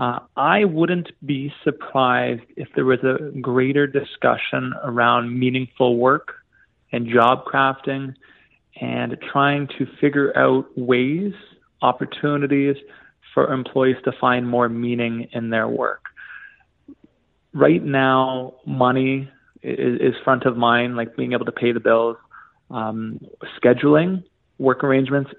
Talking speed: 125 wpm